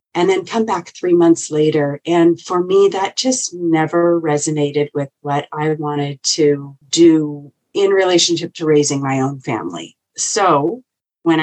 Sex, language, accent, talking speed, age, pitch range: female, English, American, 150 wpm, 40-59, 145-175 Hz